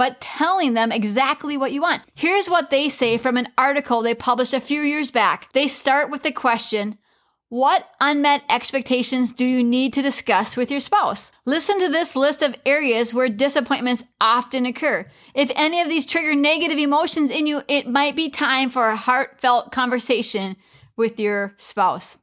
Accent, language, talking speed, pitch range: American, English, 180 wpm, 250-300 Hz